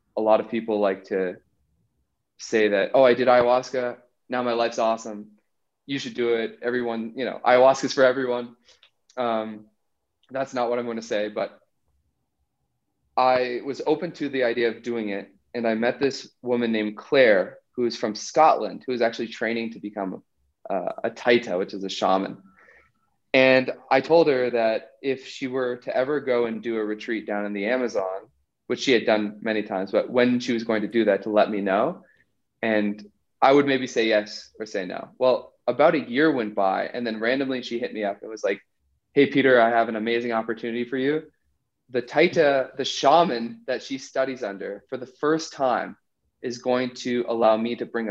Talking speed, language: 200 wpm, English